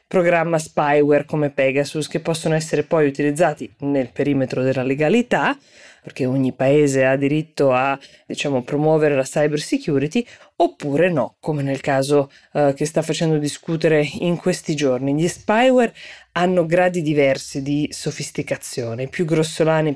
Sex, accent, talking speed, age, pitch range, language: female, native, 140 wpm, 20-39, 145-175 Hz, Italian